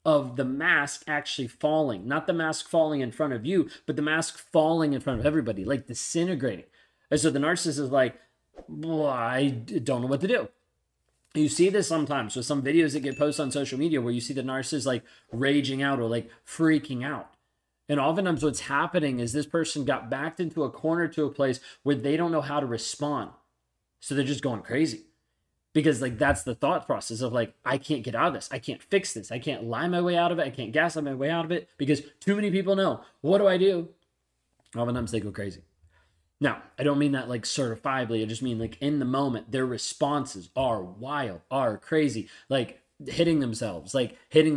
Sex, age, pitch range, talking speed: male, 30-49, 125-155 Hz, 215 wpm